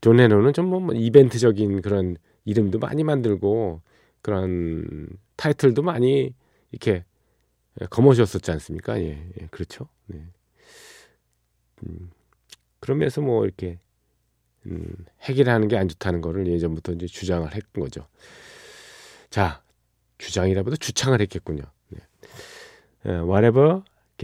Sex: male